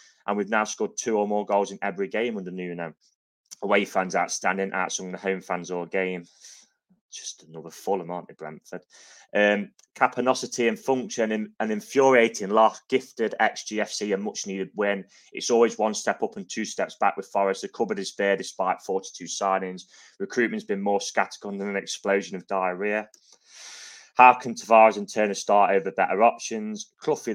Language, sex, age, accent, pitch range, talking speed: English, male, 20-39, British, 95-110 Hz, 170 wpm